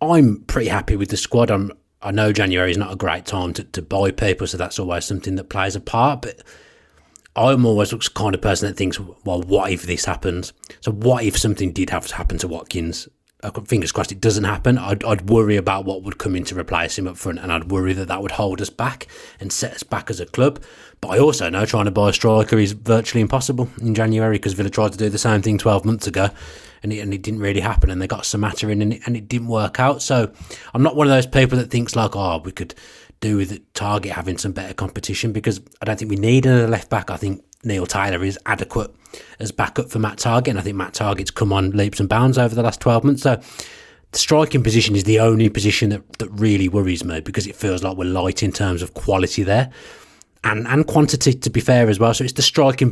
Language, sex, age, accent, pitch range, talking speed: English, male, 30-49, British, 95-110 Hz, 250 wpm